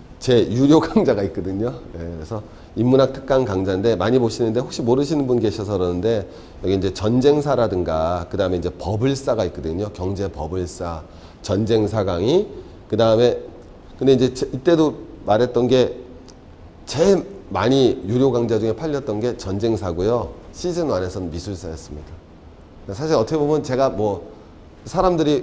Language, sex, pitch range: Korean, male, 90-120 Hz